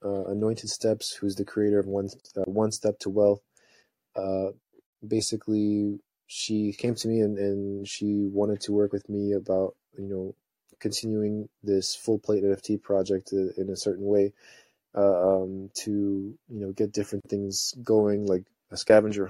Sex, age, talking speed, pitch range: male, 20-39, 160 wpm, 100-110 Hz